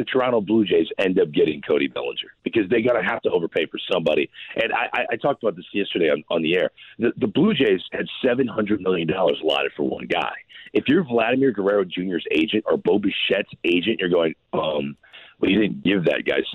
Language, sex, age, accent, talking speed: English, male, 40-59, American, 220 wpm